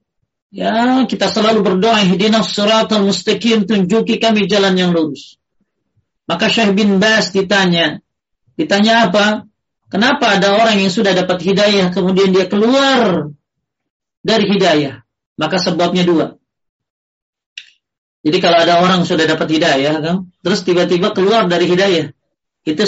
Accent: native